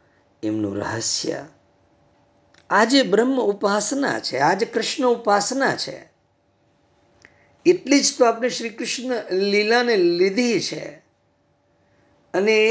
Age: 50-69